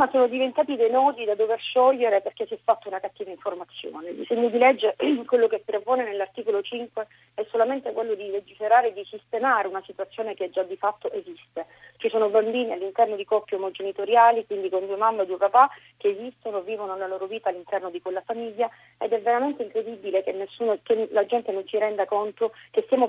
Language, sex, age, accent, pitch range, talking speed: Italian, female, 40-59, native, 195-250 Hz, 205 wpm